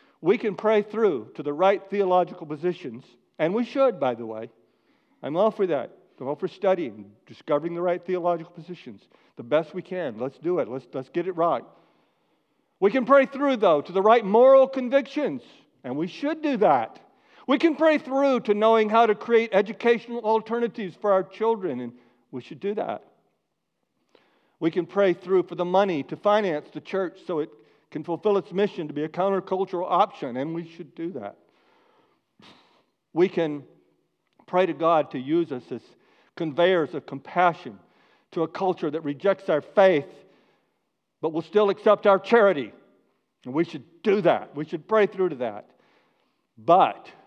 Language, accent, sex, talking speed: English, American, male, 175 wpm